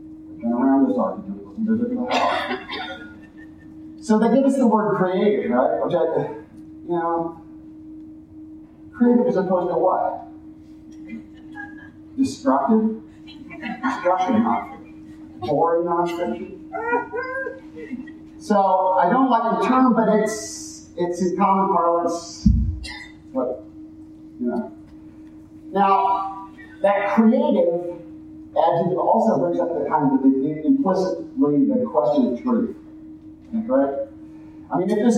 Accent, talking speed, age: American, 105 wpm, 40-59